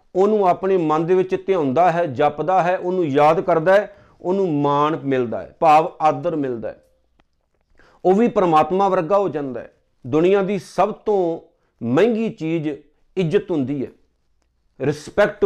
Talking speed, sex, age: 150 wpm, male, 50-69